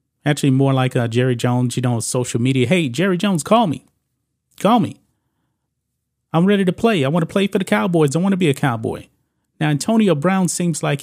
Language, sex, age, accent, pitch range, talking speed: English, male, 30-49, American, 135-165 Hz, 210 wpm